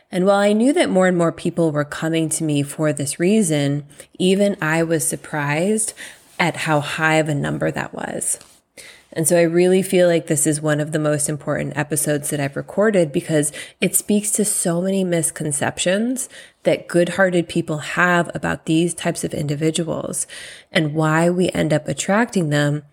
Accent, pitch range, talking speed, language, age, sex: American, 150-185 Hz, 180 wpm, English, 20-39, female